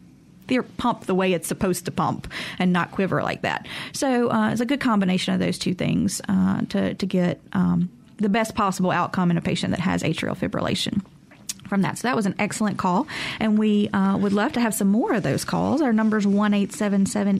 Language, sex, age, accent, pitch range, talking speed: English, female, 30-49, American, 185-230 Hz, 230 wpm